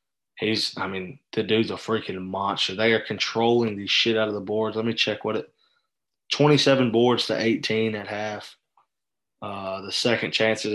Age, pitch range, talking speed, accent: 20-39, 105-115 Hz, 185 wpm, American